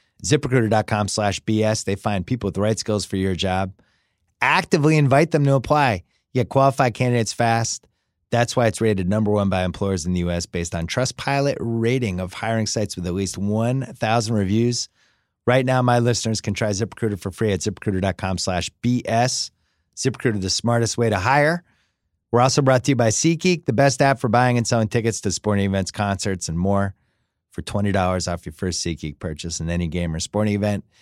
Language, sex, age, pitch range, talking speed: English, male, 30-49, 95-125 Hz, 190 wpm